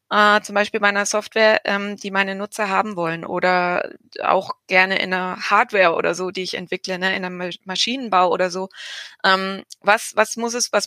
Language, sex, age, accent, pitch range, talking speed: German, female, 20-39, German, 190-225 Hz, 190 wpm